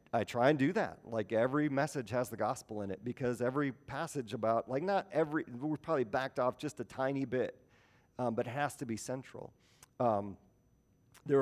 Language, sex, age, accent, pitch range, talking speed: English, male, 40-59, American, 110-135 Hz, 195 wpm